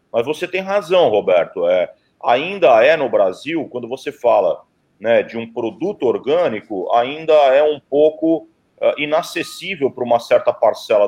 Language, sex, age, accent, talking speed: Portuguese, male, 40-59, Brazilian, 140 wpm